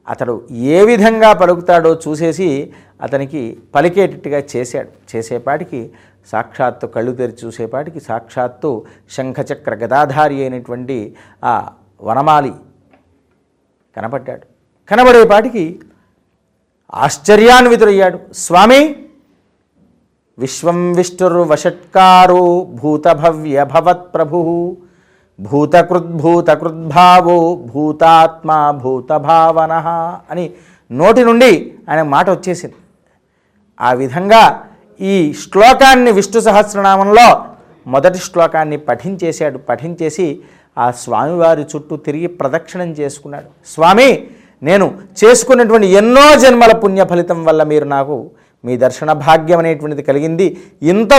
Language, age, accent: Telugu, 50-69, native